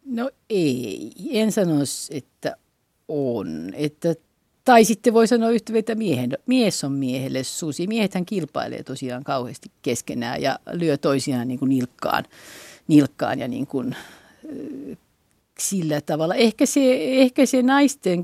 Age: 50-69